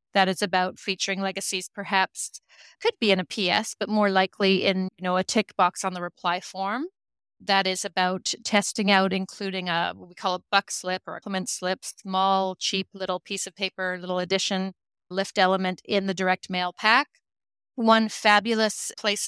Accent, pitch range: American, 180-205 Hz